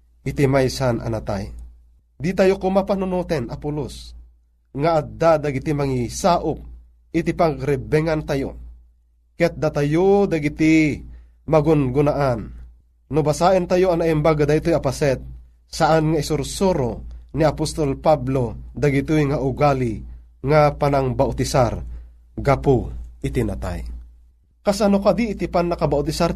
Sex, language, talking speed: male, Filipino, 95 wpm